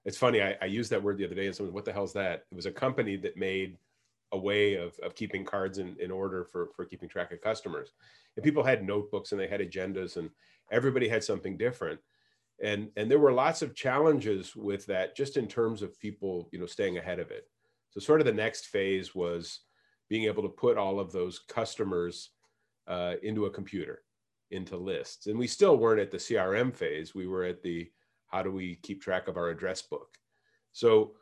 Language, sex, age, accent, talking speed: English, male, 40-59, American, 215 wpm